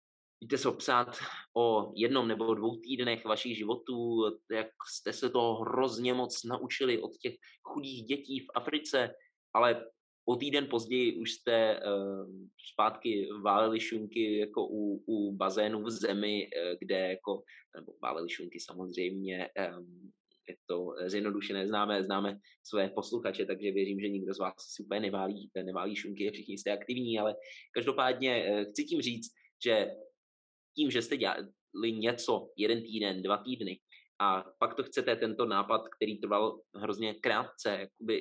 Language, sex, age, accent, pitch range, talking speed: Czech, male, 20-39, native, 95-120 Hz, 155 wpm